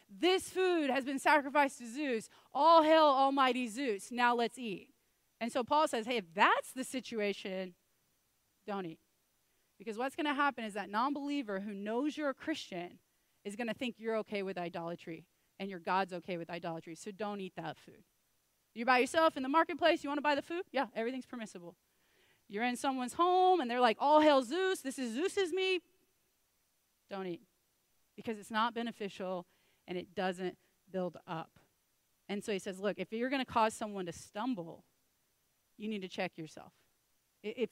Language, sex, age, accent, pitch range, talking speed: English, female, 30-49, American, 190-270 Hz, 185 wpm